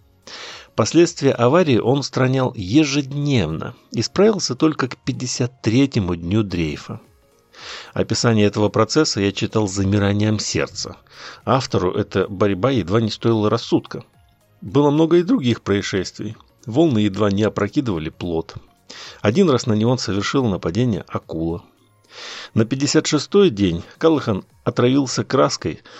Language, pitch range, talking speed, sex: Russian, 100-135 Hz, 115 wpm, male